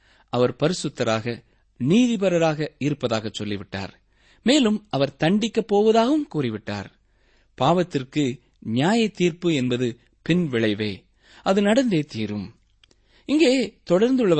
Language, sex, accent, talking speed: Tamil, male, native, 85 wpm